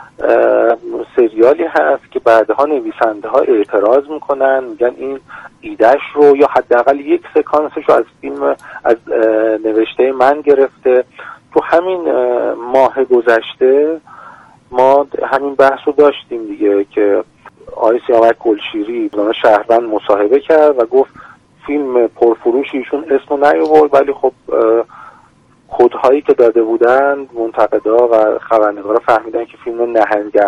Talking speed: 120 wpm